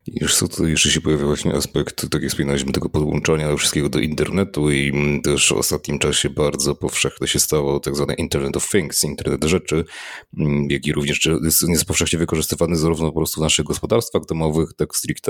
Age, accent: 30-49, native